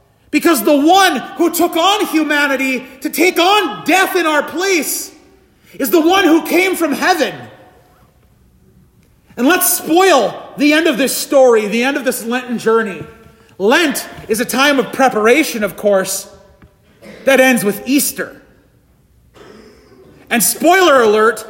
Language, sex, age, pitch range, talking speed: English, male, 40-59, 220-300 Hz, 140 wpm